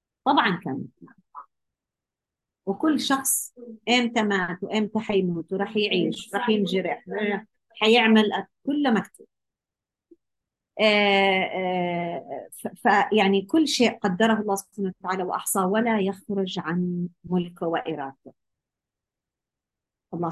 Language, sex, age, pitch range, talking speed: Arabic, female, 50-69, 185-235 Hz, 90 wpm